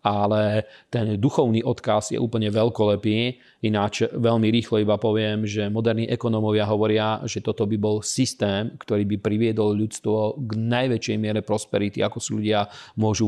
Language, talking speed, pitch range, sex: Slovak, 150 wpm, 105-115 Hz, male